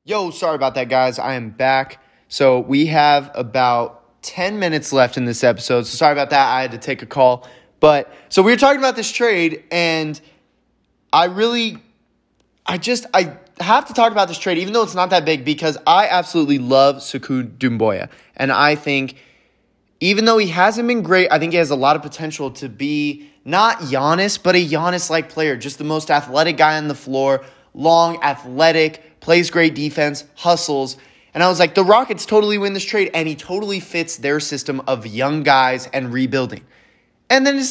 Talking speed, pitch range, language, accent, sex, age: 195 wpm, 135-190 Hz, English, American, male, 20-39